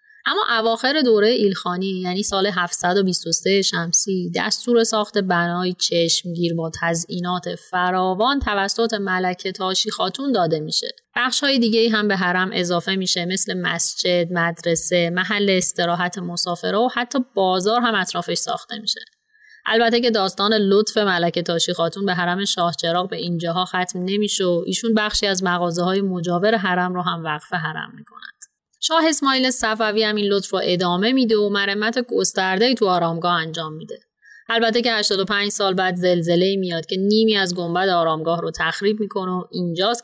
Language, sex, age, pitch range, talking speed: Persian, female, 30-49, 175-220 Hz, 150 wpm